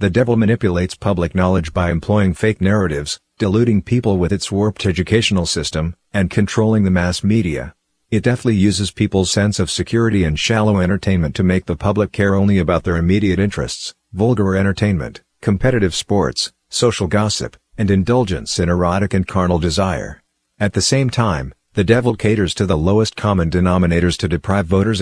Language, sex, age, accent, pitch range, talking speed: English, male, 50-69, American, 90-105 Hz, 165 wpm